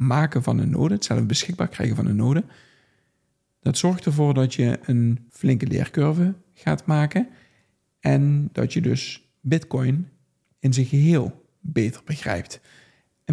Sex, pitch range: male, 125-155 Hz